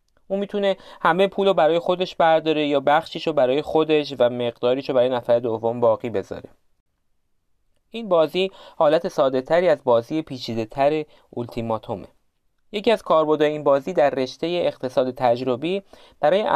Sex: male